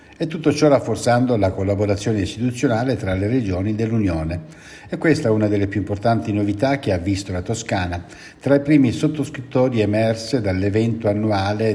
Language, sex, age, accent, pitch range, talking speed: Italian, male, 60-79, native, 95-120 Hz, 160 wpm